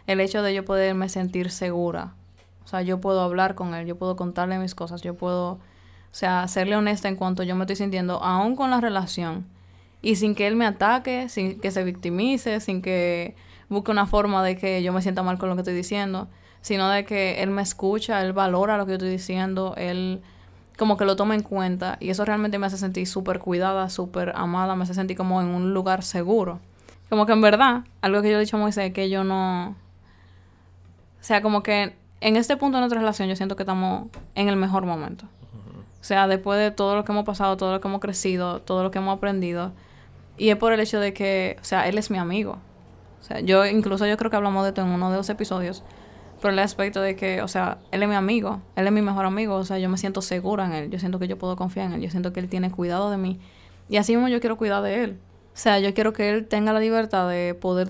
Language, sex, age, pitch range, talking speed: Spanish, female, 20-39, 180-205 Hz, 245 wpm